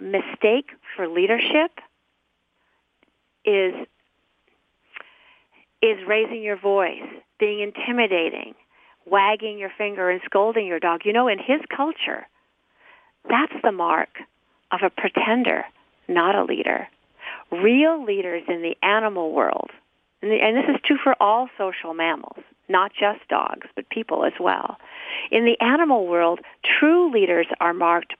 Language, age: English, 50-69